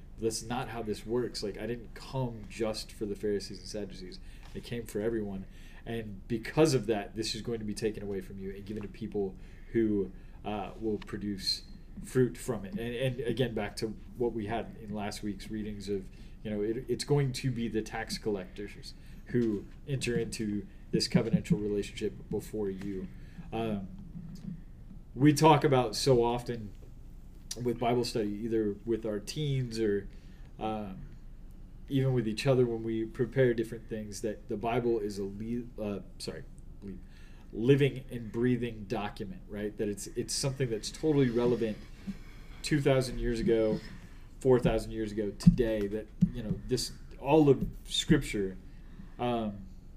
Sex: male